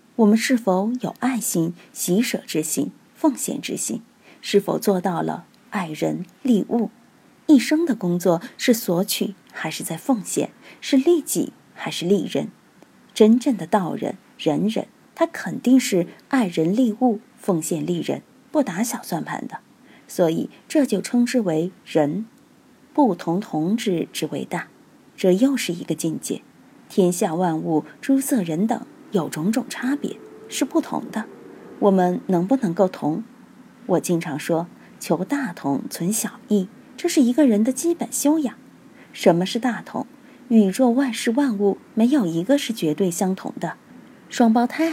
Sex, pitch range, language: female, 180-260 Hz, Chinese